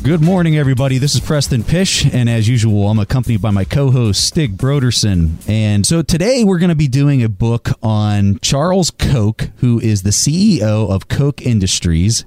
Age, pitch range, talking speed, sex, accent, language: 30-49, 95-130 Hz, 180 wpm, male, American, English